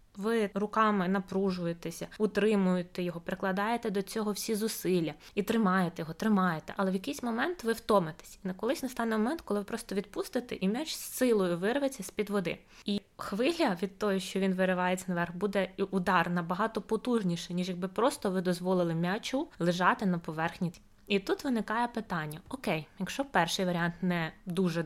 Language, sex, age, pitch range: Ukrainian, female, 20-39, 180-220 Hz